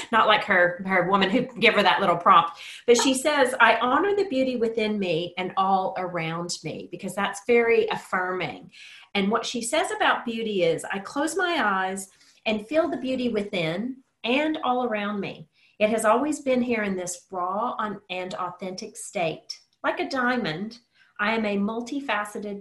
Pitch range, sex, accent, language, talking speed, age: 185-240 Hz, female, American, English, 180 wpm, 40-59